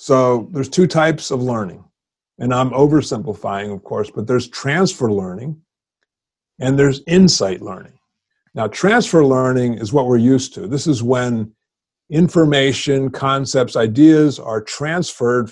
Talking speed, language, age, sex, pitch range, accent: 135 wpm, English, 50-69, male, 115-155 Hz, American